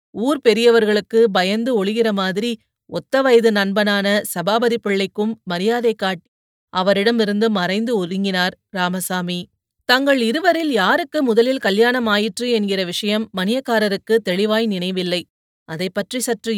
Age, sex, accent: 30-49, female, native